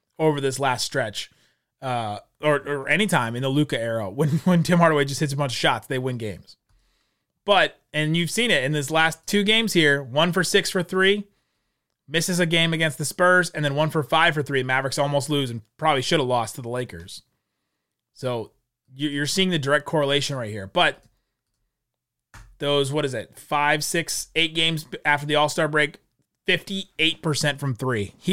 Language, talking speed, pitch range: English, 190 wpm, 130-160 Hz